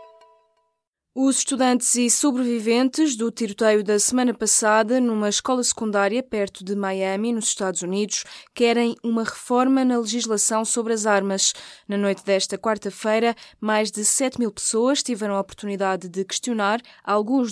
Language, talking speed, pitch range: Portuguese, 140 wpm, 200-235 Hz